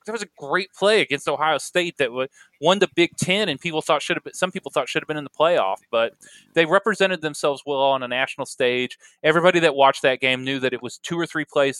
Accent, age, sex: American, 20-39, male